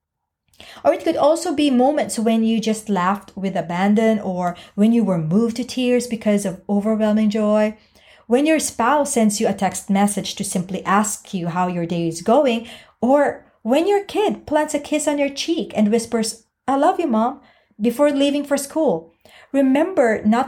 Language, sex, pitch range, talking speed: English, female, 185-260 Hz, 180 wpm